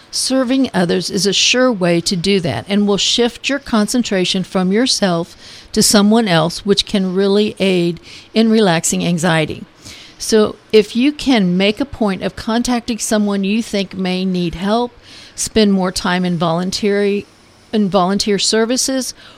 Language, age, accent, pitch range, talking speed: English, 50-69, American, 185-220 Hz, 150 wpm